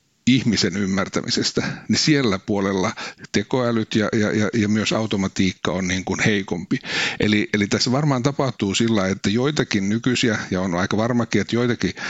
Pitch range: 100-115 Hz